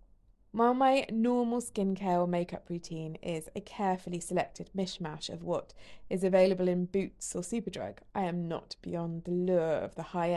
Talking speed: 170 wpm